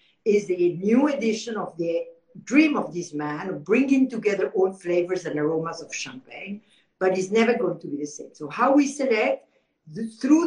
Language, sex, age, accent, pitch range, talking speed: English, female, 60-79, French, 175-250 Hz, 180 wpm